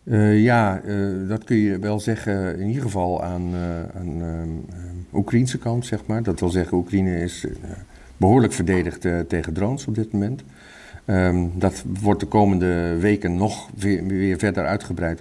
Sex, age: male, 50-69